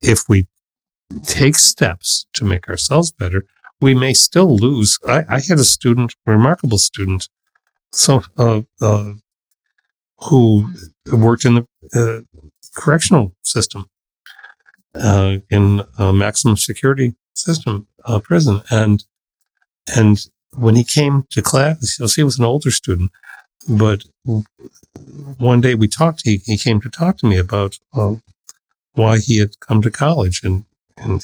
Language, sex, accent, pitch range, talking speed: English, male, American, 100-120 Hz, 140 wpm